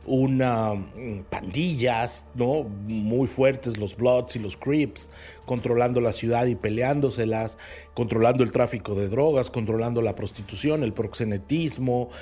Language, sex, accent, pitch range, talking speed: Spanish, male, Mexican, 110-135 Hz, 125 wpm